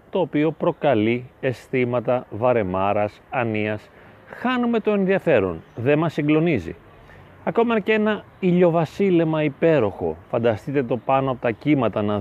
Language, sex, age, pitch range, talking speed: Greek, male, 30-49, 130-200 Hz, 120 wpm